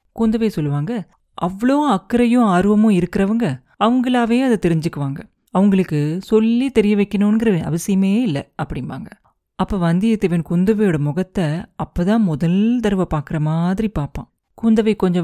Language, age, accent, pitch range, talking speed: Tamil, 30-49, native, 165-215 Hz, 110 wpm